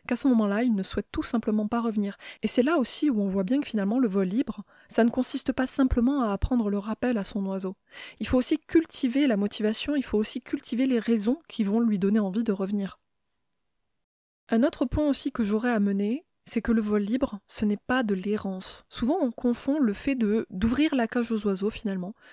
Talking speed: 225 wpm